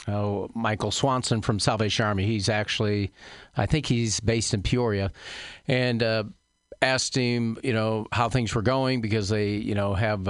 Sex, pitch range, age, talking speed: male, 105-120 Hz, 40-59, 165 wpm